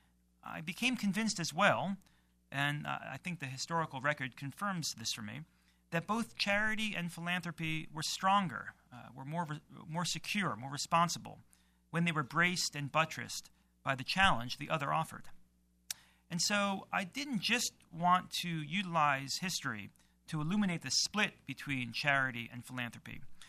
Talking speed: 150 wpm